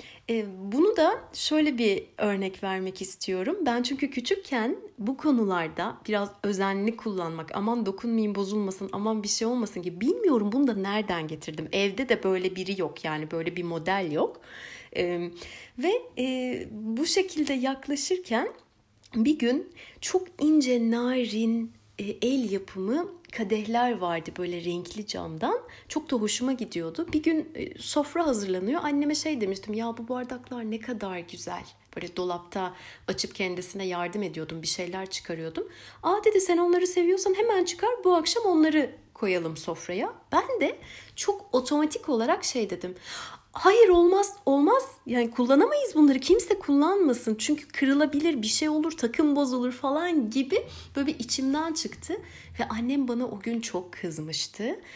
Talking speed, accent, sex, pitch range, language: 140 wpm, native, female, 195-305 Hz, Turkish